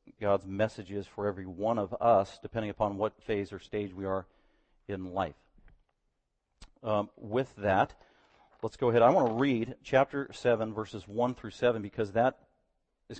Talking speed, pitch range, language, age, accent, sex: 170 wpm, 105-125 Hz, English, 40-59, American, male